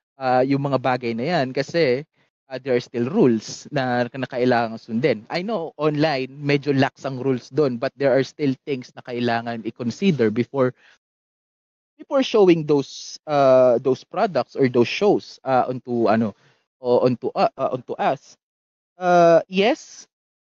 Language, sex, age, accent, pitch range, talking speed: Filipino, male, 20-39, native, 125-170 Hz, 160 wpm